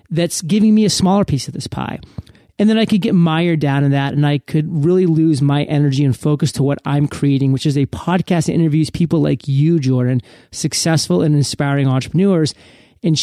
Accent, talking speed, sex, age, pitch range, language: American, 210 wpm, male, 30-49, 140-185 Hz, English